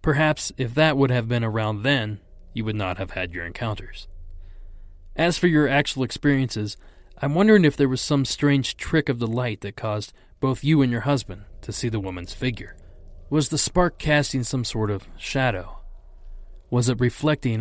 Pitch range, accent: 100-140 Hz, American